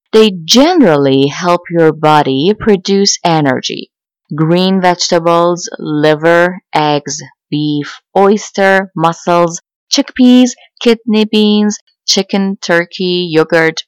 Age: 20-39